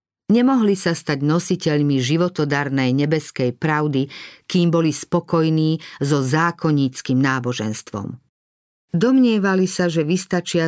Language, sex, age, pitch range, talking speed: Slovak, female, 50-69, 145-180 Hz, 95 wpm